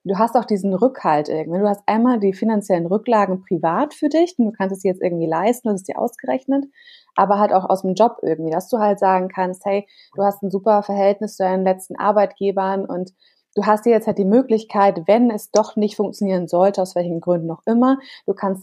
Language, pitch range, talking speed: German, 185-220 Hz, 230 wpm